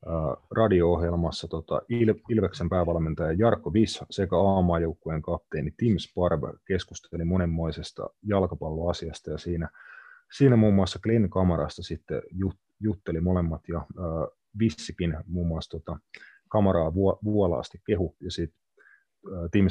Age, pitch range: 30-49, 80-95 Hz